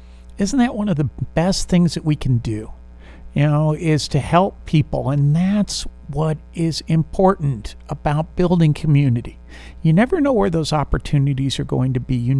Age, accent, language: 50-69, American, English